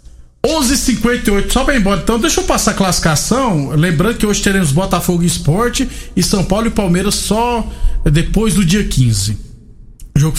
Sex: male